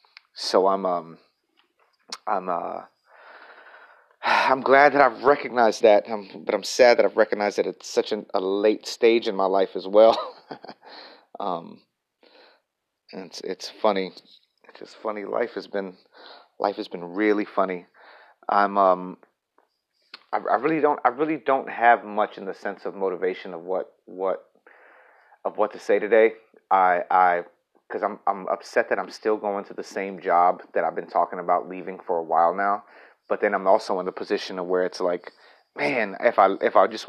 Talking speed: 180 wpm